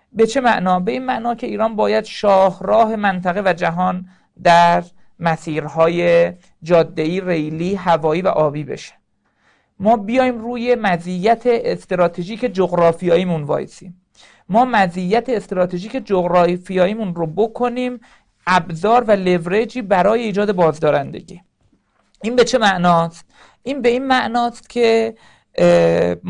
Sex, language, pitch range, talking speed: male, Persian, 175-220 Hz, 110 wpm